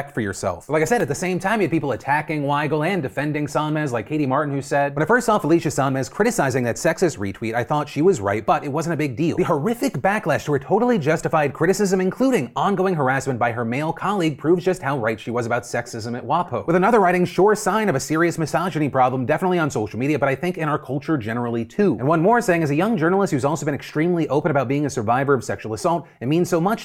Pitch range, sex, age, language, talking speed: 130-175 Hz, male, 30-49, English, 255 wpm